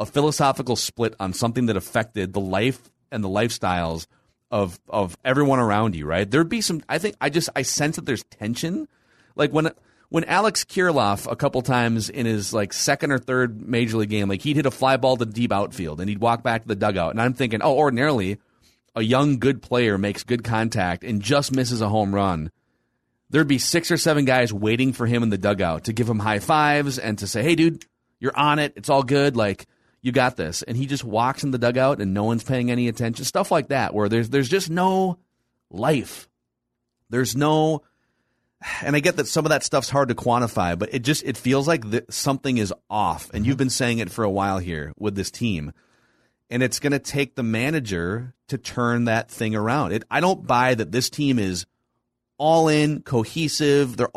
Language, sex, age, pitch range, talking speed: English, male, 30-49, 105-140 Hz, 215 wpm